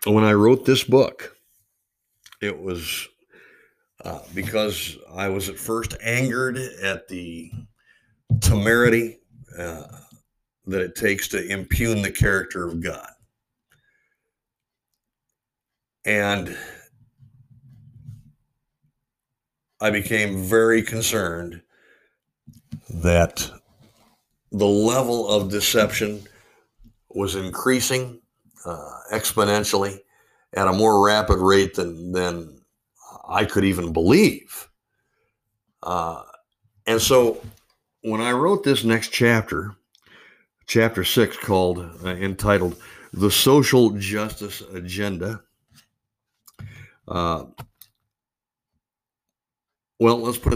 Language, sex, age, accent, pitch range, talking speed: English, male, 60-79, American, 95-120 Hz, 90 wpm